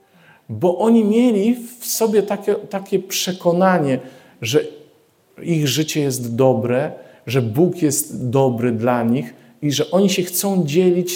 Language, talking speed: Polish, 135 wpm